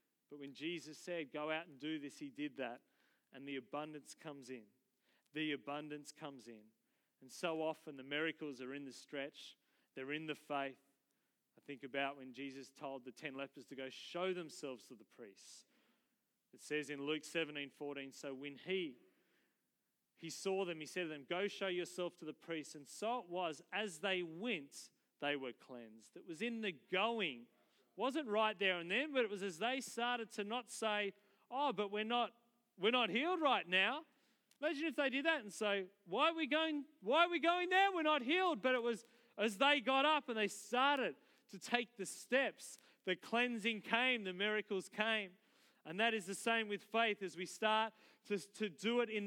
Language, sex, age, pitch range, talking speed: English, male, 30-49, 150-235 Hz, 200 wpm